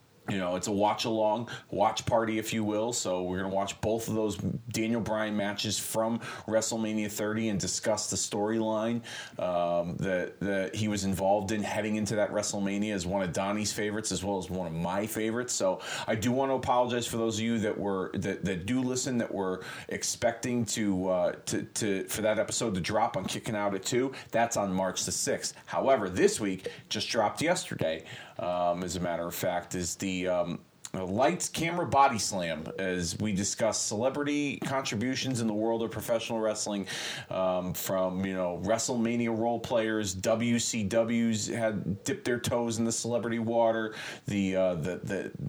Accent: American